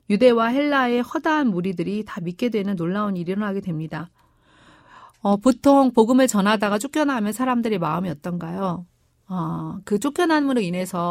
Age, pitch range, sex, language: 40-59, 180-255 Hz, female, Korean